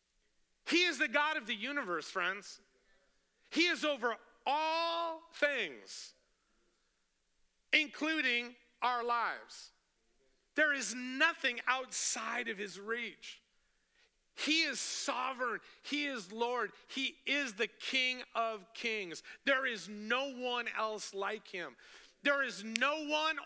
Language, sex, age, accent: English, male, 40-59, American